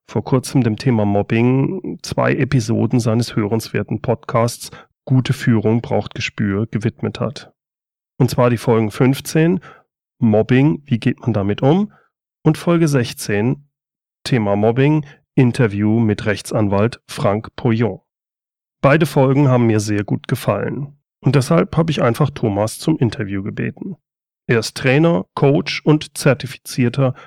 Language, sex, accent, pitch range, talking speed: German, male, German, 115-145 Hz, 130 wpm